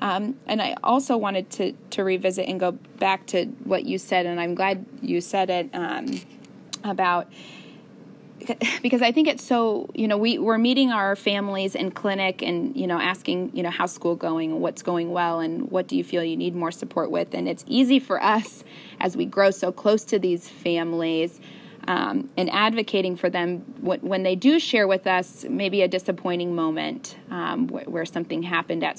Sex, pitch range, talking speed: female, 175-230 Hz, 190 wpm